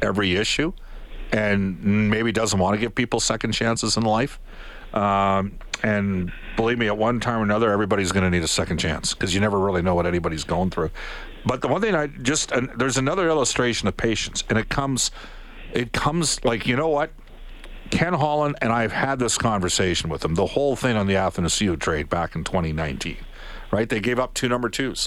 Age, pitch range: 50-69, 100-130 Hz